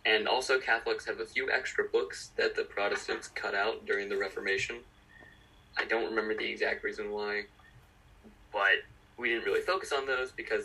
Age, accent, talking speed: 20-39, American, 175 wpm